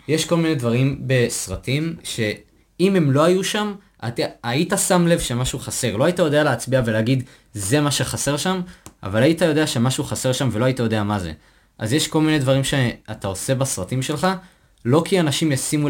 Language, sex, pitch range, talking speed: Hebrew, male, 105-150 Hz, 180 wpm